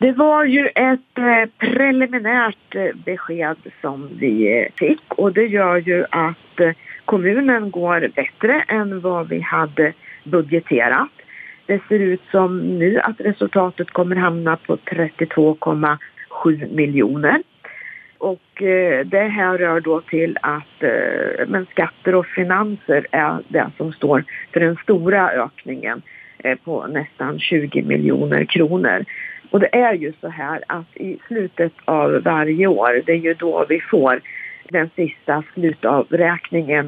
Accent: native